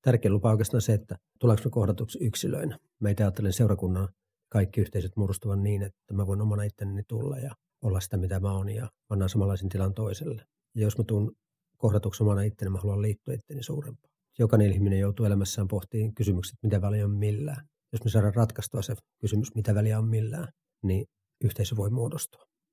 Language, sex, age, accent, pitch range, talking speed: Finnish, male, 40-59, native, 105-125 Hz, 185 wpm